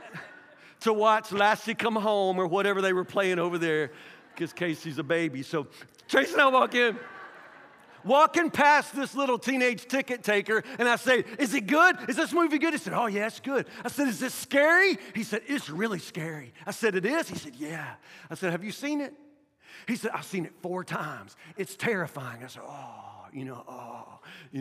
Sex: male